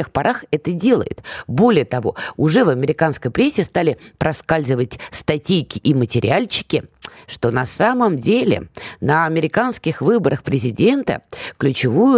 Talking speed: 115 wpm